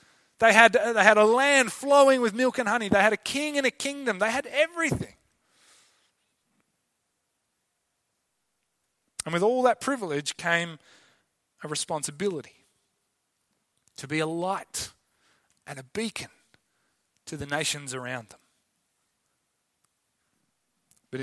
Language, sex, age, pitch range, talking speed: English, male, 30-49, 145-220 Hz, 115 wpm